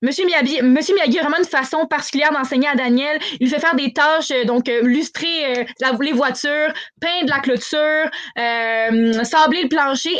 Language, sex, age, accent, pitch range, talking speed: French, female, 20-39, Canadian, 245-305 Hz, 165 wpm